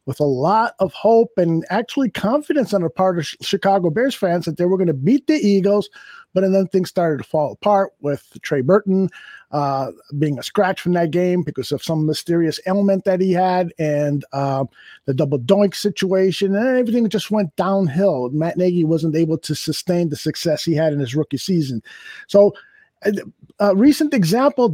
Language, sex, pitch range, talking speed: English, male, 155-205 Hz, 185 wpm